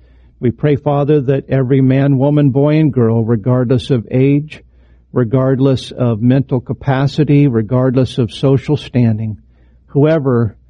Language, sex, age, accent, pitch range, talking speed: English, male, 50-69, American, 110-140 Hz, 125 wpm